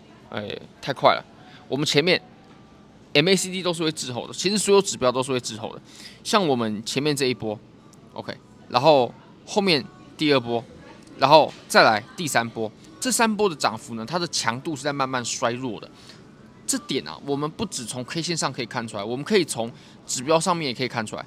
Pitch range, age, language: 120-170 Hz, 20-39, Chinese